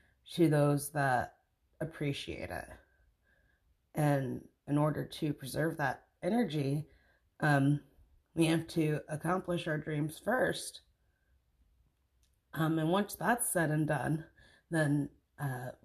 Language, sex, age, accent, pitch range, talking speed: English, female, 30-49, American, 125-170 Hz, 110 wpm